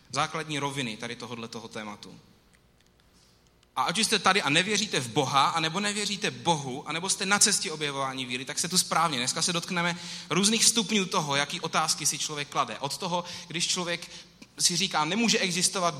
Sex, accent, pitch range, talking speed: male, native, 140-195 Hz, 175 wpm